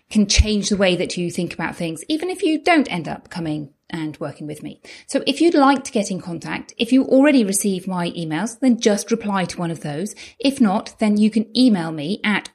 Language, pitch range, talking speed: English, 175-245 Hz, 235 wpm